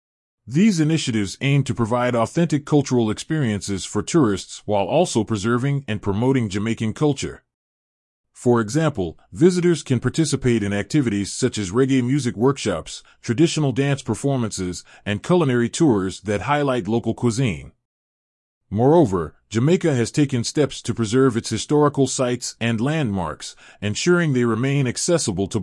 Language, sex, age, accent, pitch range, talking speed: English, male, 30-49, American, 105-145 Hz, 130 wpm